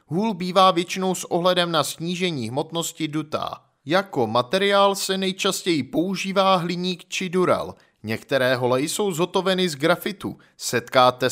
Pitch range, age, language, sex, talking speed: 150-190 Hz, 30-49, Czech, male, 125 wpm